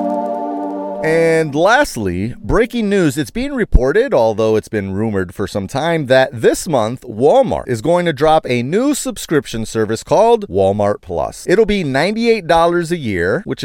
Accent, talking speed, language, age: American, 160 wpm, English, 30-49